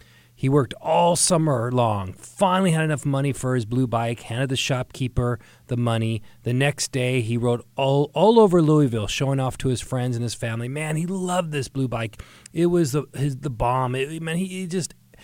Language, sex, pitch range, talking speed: English, male, 110-140 Hz, 205 wpm